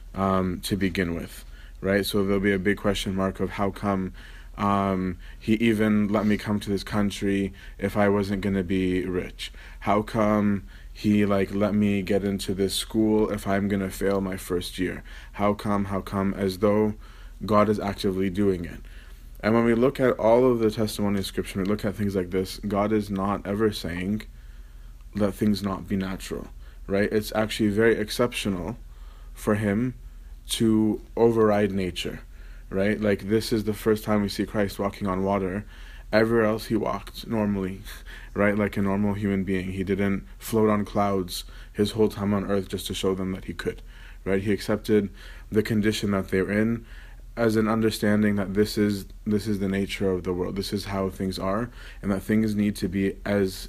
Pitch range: 95-105 Hz